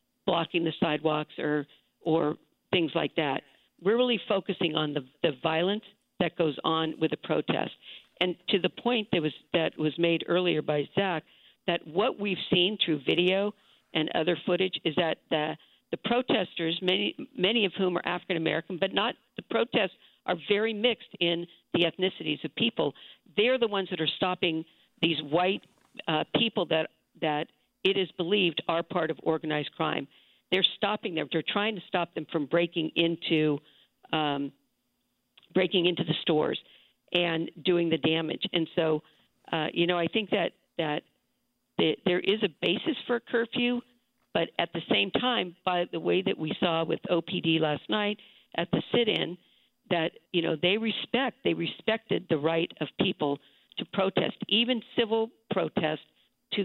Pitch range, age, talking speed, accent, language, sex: 160-200 Hz, 50-69, 165 wpm, American, English, female